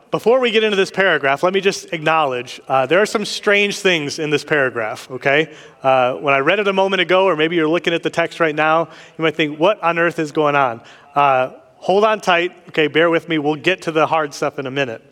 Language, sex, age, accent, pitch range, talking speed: English, male, 30-49, American, 140-180 Hz, 250 wpm